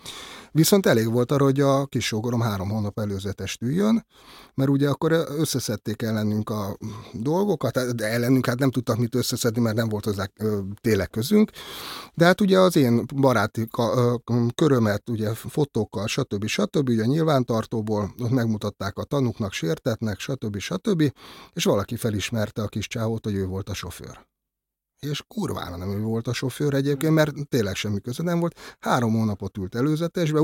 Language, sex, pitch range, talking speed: Hungarian, male, 105-140 Hz, 160 wpm